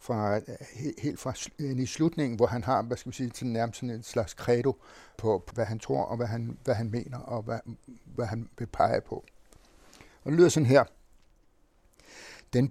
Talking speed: 195 wpm